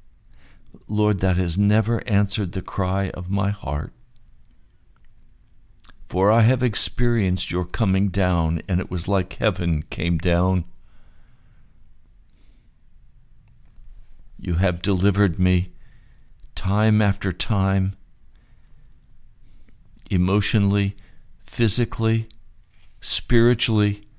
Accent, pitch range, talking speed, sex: American, 85-100 Hz, 85 wpm, male